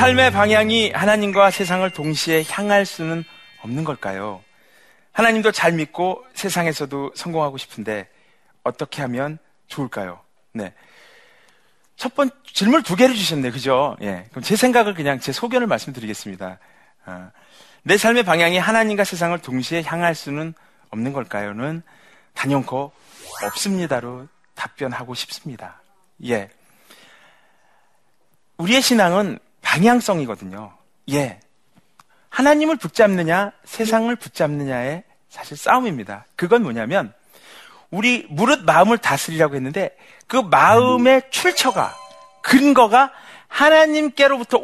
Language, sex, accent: Korean, male, native